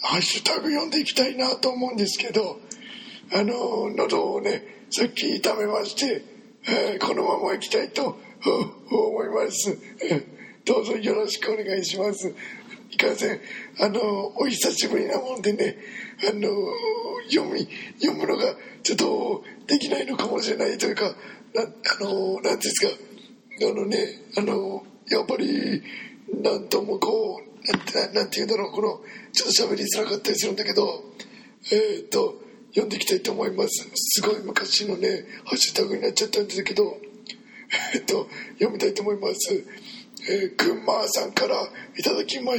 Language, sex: Japanese, male